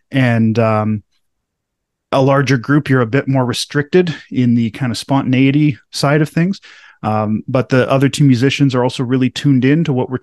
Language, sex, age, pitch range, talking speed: English, male, 30-49, 120-140 Hz, 190 wpm